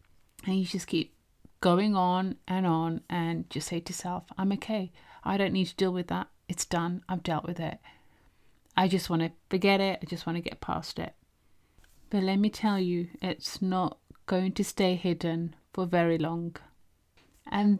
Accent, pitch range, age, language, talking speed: British, 175-205 Hz, 30-49, English, 190 wpm